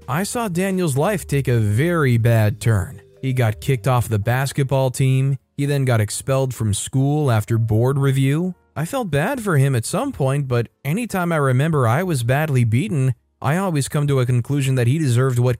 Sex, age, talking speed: male, 20-39, 195 wpm